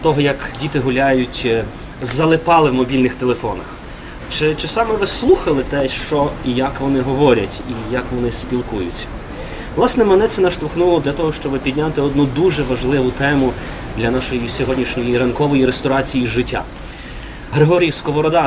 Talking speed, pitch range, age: 135 wpm, 125-155 Hz, 20-39